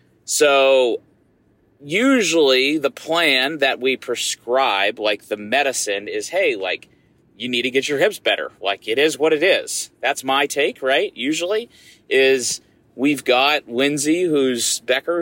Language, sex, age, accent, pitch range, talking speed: English, male, 30-49, American, 115-150 Hz, 145 wpm